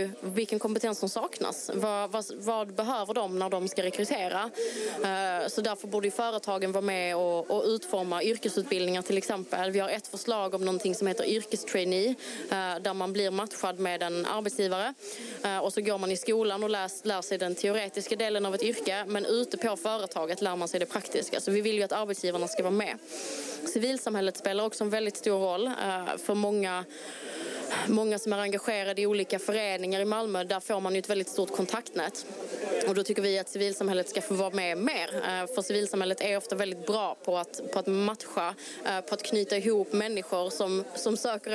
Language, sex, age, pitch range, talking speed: Swedish, female, 20-39, 190-215 Hz, 190 wpm